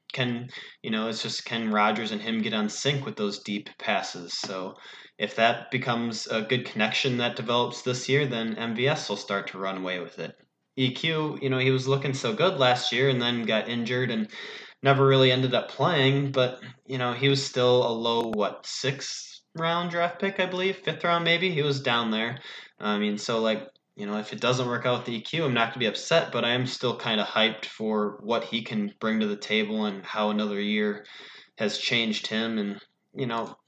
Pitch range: 105-130 Hz